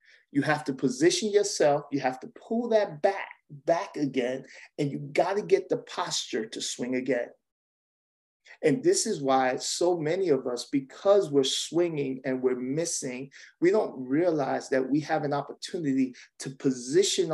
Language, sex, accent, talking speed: English, male, American, 165 wpm